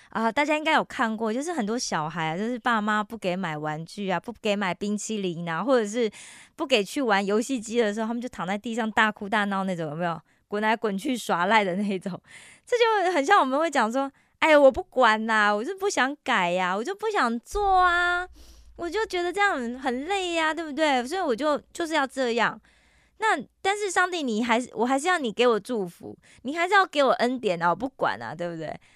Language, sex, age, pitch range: Korean, female, 20-39, 200-300 Hz